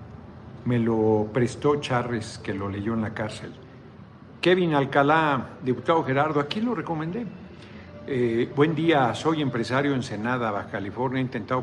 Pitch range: 110-140 Hz